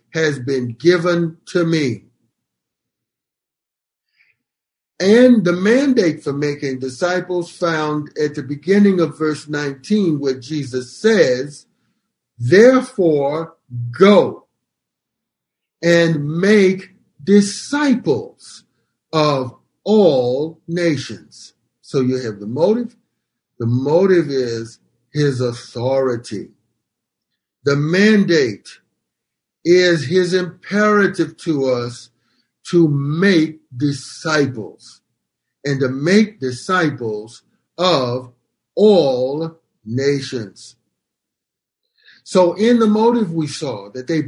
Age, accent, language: 50-69, American, English